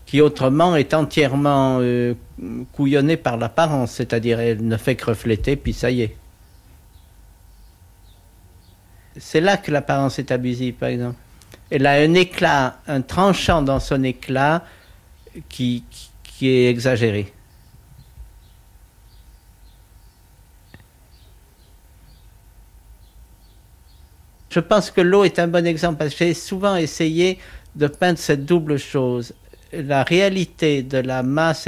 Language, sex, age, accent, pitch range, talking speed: French, male, 50-69, French, 105-155 Hz, 120 wpm